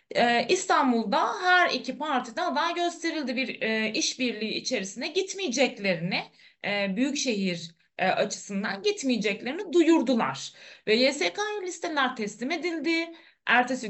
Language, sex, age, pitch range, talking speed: Turkish, female, 30-49, 200-320 Hz, 90 wpm